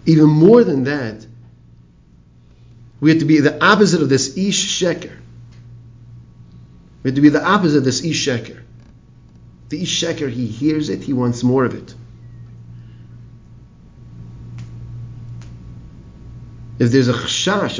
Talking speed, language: 130 wpm, English